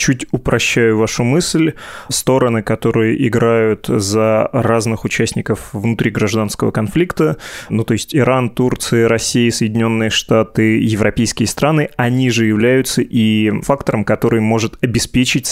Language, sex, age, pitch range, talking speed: Russian, male, 20-39, 110-125 Hz, 120 wpm